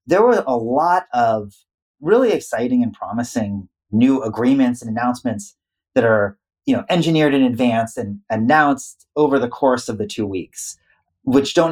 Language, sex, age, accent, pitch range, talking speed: English, male, 30-49, American, 105-135 Hz, 160 wpm